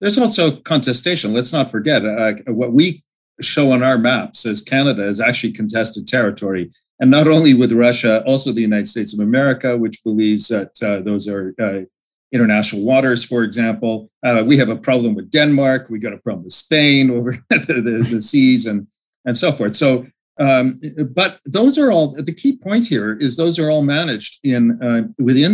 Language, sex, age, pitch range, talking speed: English, male, 40-59, 110-145 Hz, 190 wpm